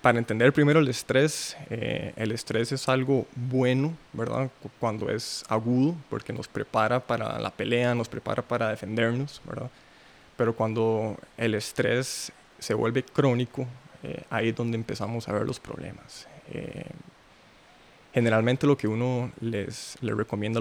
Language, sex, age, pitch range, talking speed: Spanish, male, 20-39, 110-130 Hz, 150 wpm